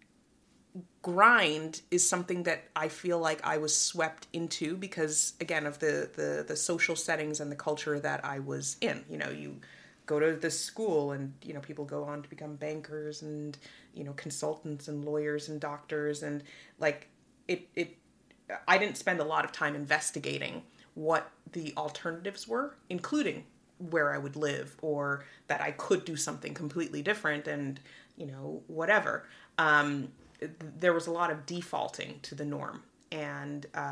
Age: 30-49